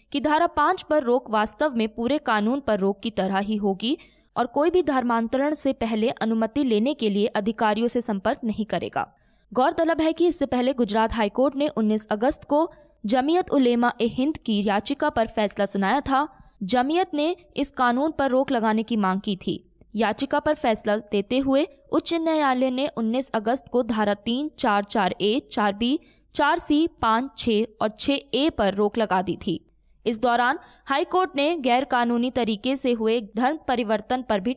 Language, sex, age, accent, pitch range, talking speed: Hindi, female, 20-39, native, 215-285 Hz, 175 wpm